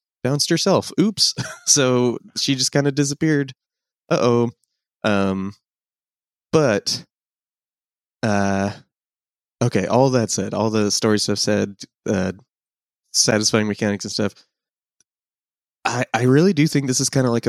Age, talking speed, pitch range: 20-39, 130 wpm, 100-125 Hz